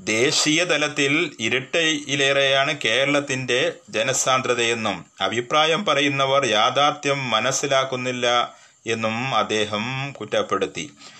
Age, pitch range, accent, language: 30-49, 120-145 Hz, native, Malayalam